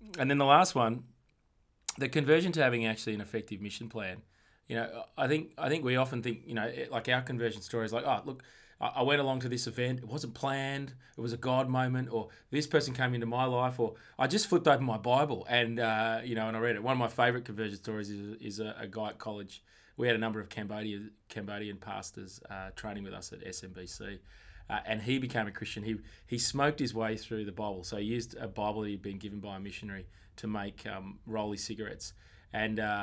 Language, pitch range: English, 105-130 Hz